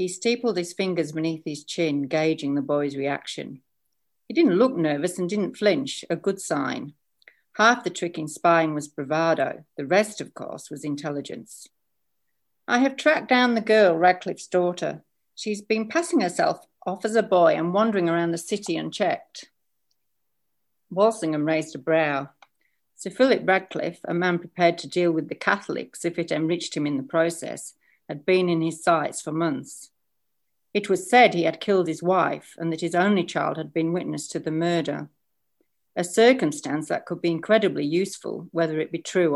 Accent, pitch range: British, 160-210 Hz